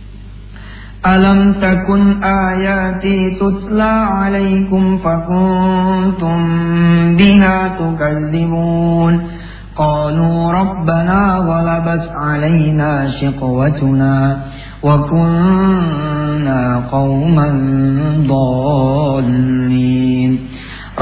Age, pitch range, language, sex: 40-59, 135-190 Hz, English, male